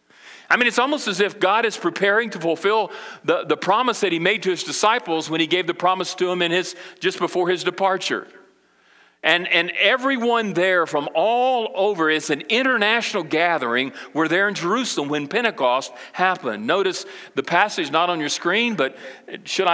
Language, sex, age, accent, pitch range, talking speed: English, male, 40-59, American, 155-200 Hz, 180 wpm